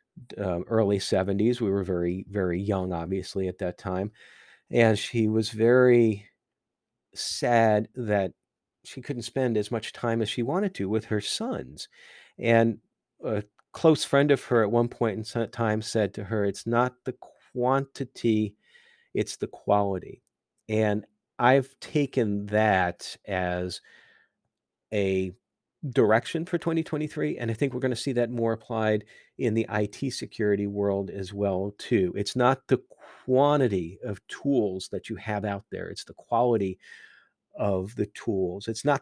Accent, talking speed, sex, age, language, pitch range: American, 150 wpm, male, 40-59, English, 100-120 Hz